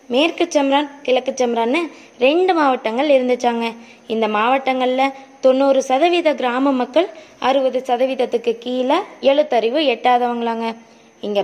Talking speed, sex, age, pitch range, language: 95 wpm, female, 20-39, 240-290 Hz, Tamil